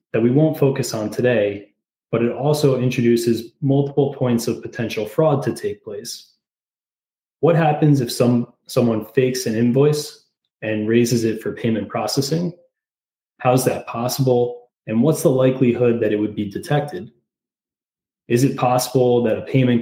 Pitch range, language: 110-140 Hz, English